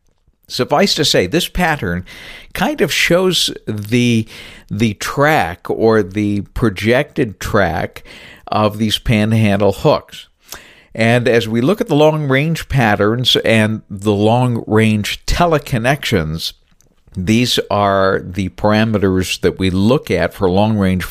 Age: 50-69